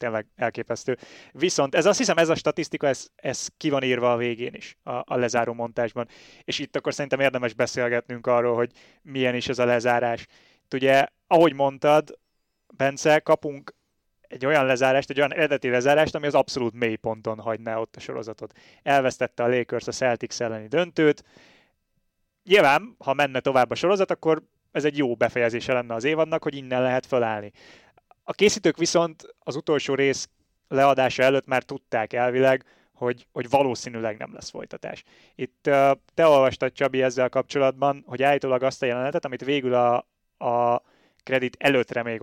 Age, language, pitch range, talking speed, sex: 20-39, Hungarian, 120-140 Hz, 165 wpm, male